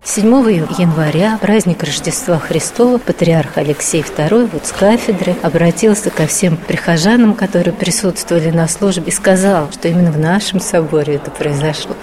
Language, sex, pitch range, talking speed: Russian, female, 160-200 Hz, 140 wpm